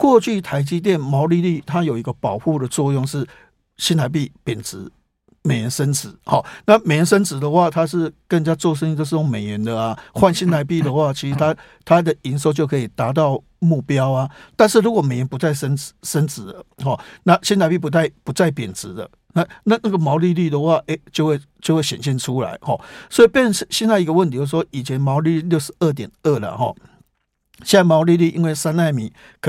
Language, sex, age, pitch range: Chinese, male, 50-69, 135-175 Hz